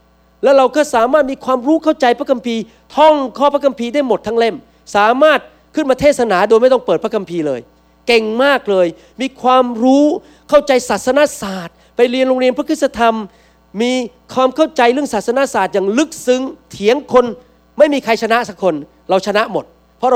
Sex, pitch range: male, 180-260 Hz